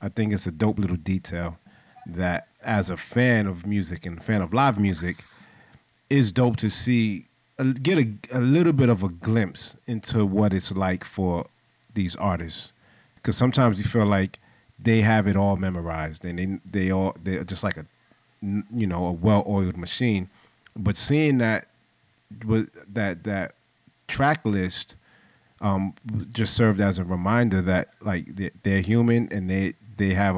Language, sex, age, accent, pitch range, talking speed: English, male, 30-49, American, 95-110 Hz, 165 wpm